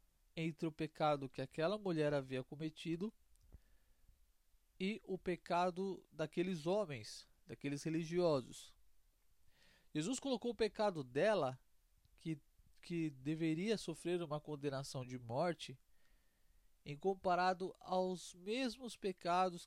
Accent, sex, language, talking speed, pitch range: Brazilian, male, Portuguese, 100 wpm, 125-185 Hz